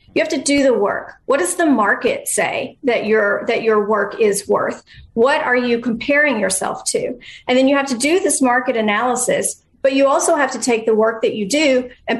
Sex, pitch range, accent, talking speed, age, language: female, 225-280 Hz, American, 220 wpm, 40-59, English